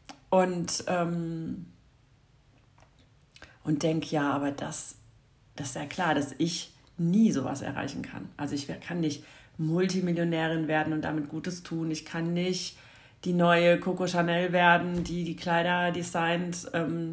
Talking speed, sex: 140 wpm, female